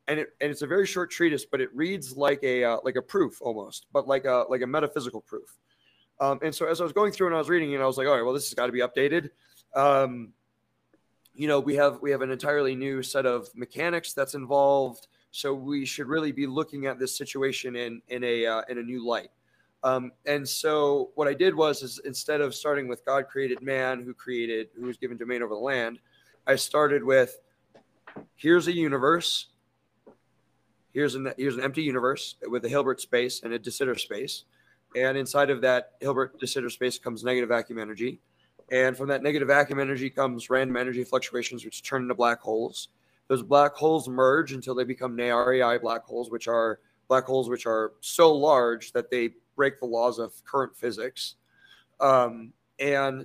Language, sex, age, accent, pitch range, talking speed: English, male, 20-39, American, 125-145 Hz, 205 wpm